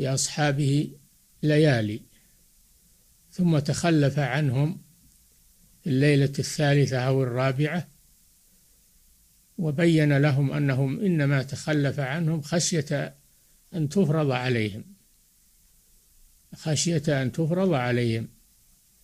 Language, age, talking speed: Arabic, 60-79, 75 wpm